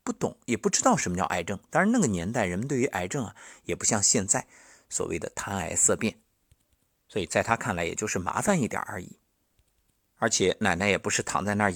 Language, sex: Chinese, male